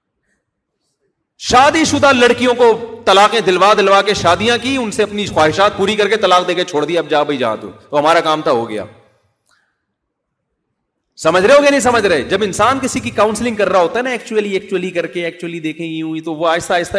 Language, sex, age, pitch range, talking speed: Urdu, male, 30-49, 170-220 Hz, 215 wpm